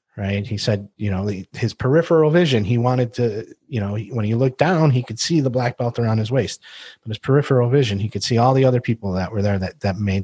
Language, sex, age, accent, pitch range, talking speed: English, male, 30-49, American, 95-120 Hz, 250 wpm